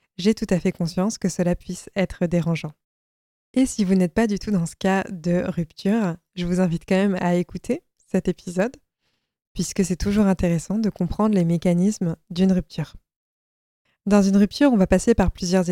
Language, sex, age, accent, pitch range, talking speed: French, female, 20-39, French, 180-215 Hz, 185 wpm